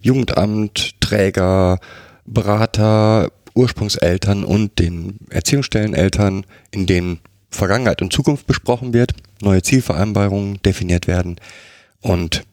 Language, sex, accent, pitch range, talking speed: German, male, German, 90-105 Hz, 90 wpm